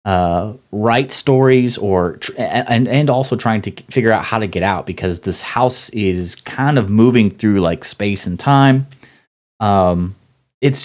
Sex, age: male, 30-49